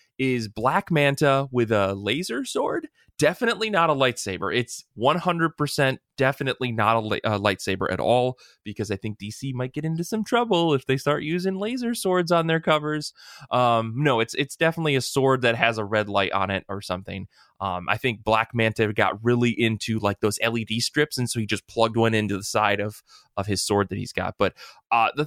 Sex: male